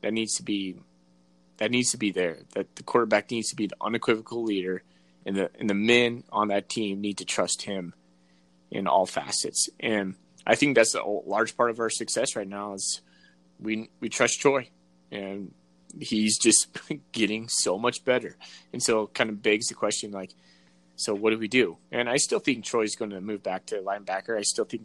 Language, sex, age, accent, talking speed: English, male, 20-39, American, 205 wpm